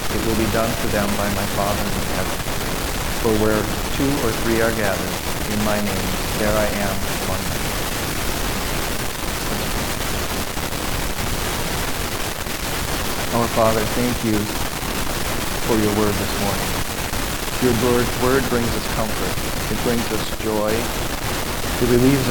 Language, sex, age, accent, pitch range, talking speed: English, male, 50-69, American, 100-115 Hz, 125 wpm